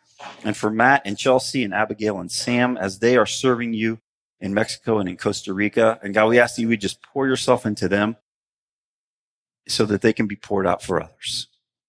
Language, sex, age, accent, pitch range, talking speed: English, male, 40-59, American, 105-130 Hz, 205 wpm